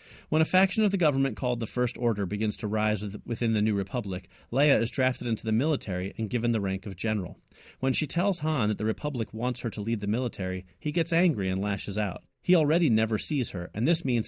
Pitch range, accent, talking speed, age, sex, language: 100-125 Hz, American, 235 wpm, 40-59, male, English